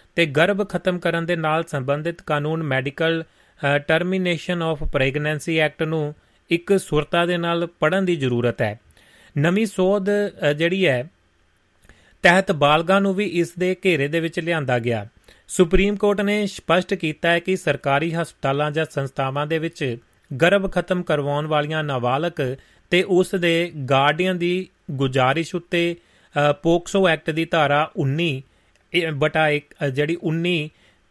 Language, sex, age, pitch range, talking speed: Punjabi, male, 30-49, 145-175 Hz, 105 wpm